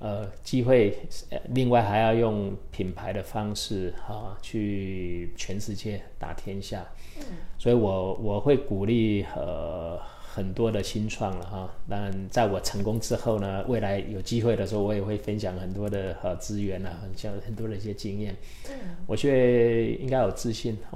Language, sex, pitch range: Chinese, male, 95-115 Hz